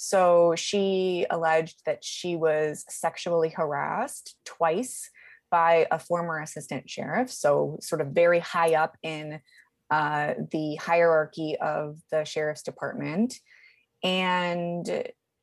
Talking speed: 115 wpm